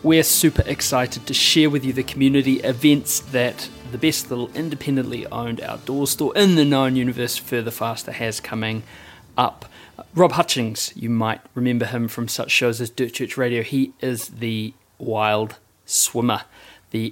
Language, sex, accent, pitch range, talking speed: English, male, Australian, 110-135 Hz, 160 wpm